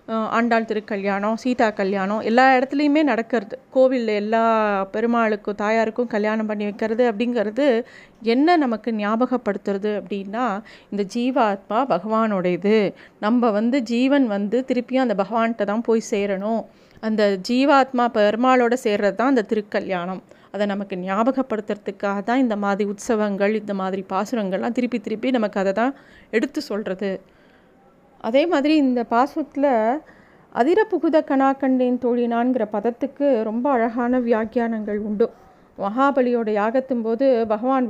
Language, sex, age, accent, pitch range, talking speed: Tamil, female, 30-49, native, 210-260 Hz, 115 wpm